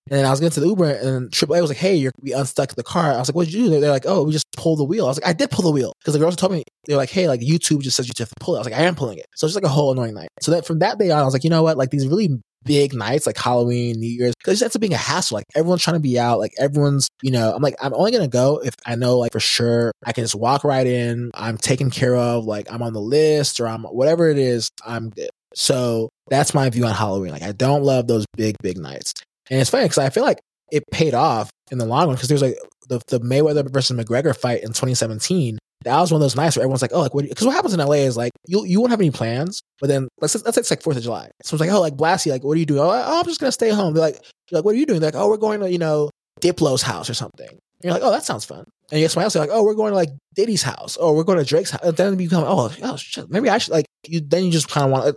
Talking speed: 325 wpm